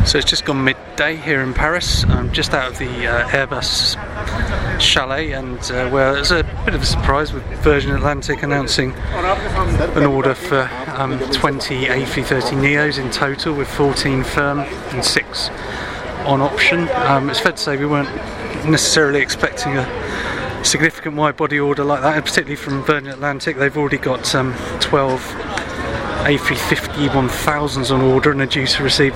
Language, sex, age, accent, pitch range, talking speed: English, male, 30-49, British, 130-145 Hz, 165 wpm